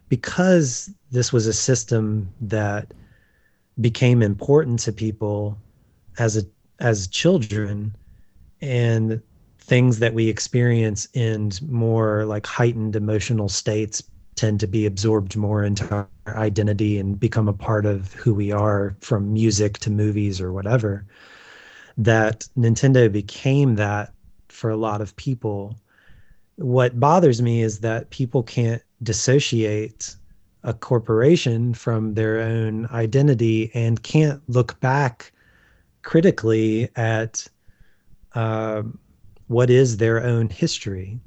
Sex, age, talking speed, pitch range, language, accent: male, 30-49, 120 wpm, 105-120 Hz, English, American